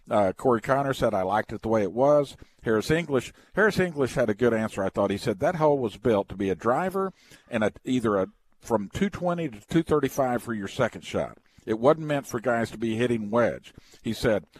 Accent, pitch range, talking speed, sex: American, 110-135 Hz, 230 wpm, male